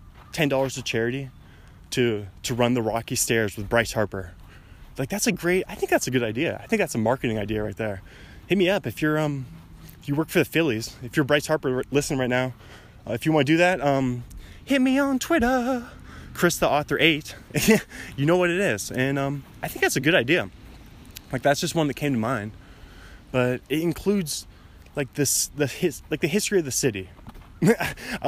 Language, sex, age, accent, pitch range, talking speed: English, male, 20-39, American, 105-145 Hz, 215 wpm